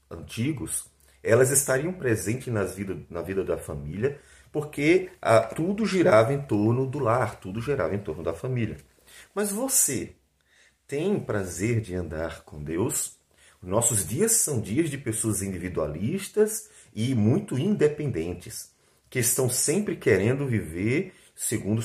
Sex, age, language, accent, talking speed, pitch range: male, 40-59, Portuguese, Brazilian, 130 wpm, 100-135 Hz